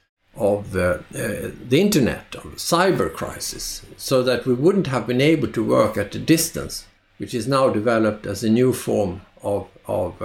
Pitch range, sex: 105-140 Hz, male